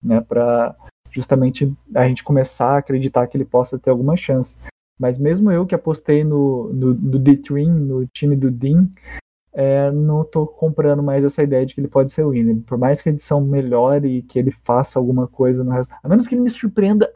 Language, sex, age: Portuguese, male, 20-39